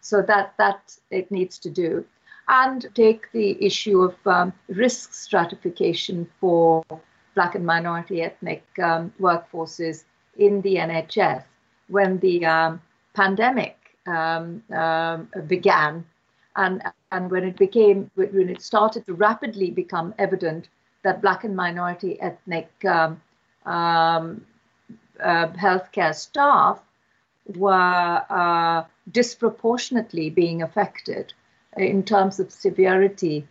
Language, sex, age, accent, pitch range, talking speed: English, female, 50-69, Indian, 170-205 Hz, 115 wpm